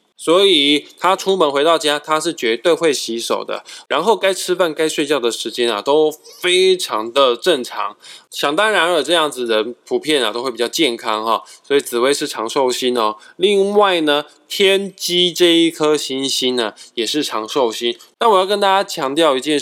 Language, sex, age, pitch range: Chinese, male, 20-39, 125-185 Hz